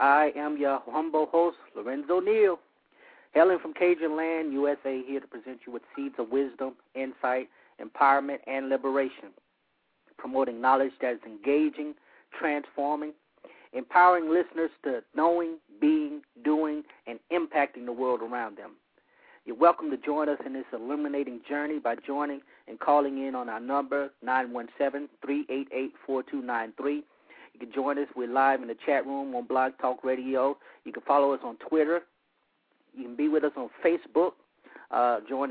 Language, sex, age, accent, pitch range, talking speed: English, male, 30-49, American, 130-150 Hz, 150 wpm